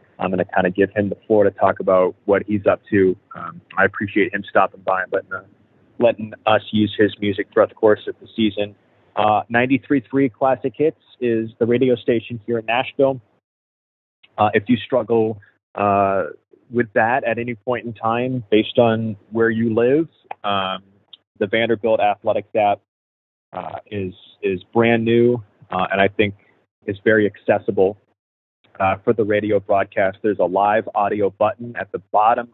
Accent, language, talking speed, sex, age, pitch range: American, English, 175 wpm, male, 30-49, 100-125 Hz